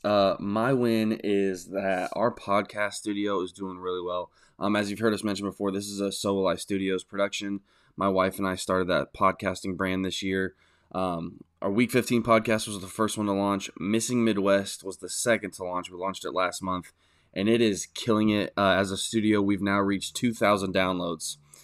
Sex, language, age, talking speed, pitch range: male, English, 10-29, 205 wpm, 95-105 Hz